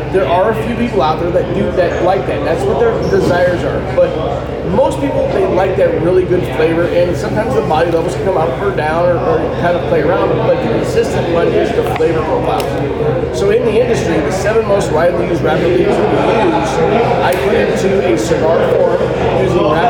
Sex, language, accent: male, English, American